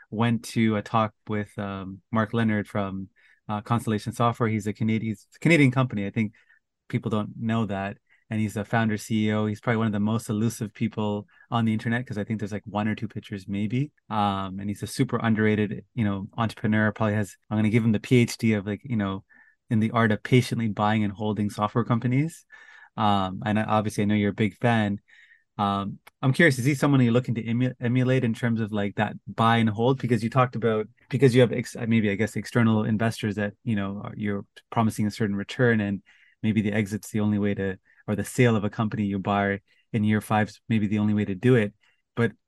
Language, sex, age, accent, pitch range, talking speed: English, male, 20-39, American, 105-120 Hz, 220 wpm